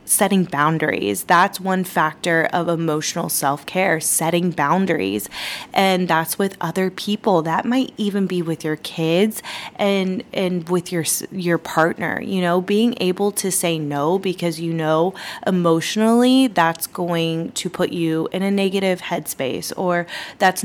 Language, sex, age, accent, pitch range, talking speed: English, female, 20-39, American, 155-190 Hz, 145 wpm